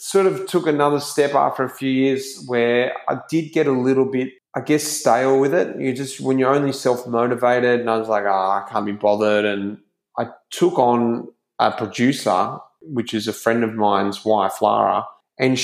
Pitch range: 115-140 Hz